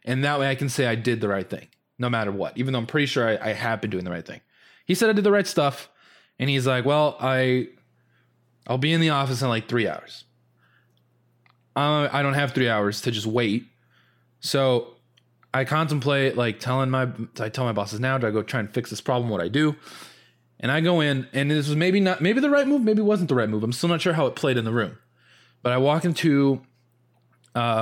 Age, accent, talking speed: 20-39, American, 245 wpm